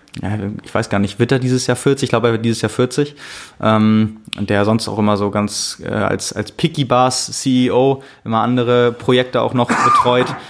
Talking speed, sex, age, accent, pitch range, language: 200 wpm, male, 20-39, German, 110-125 Hz, German